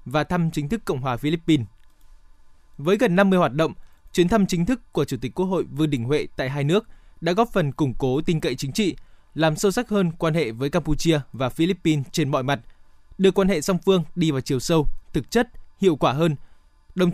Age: 20-39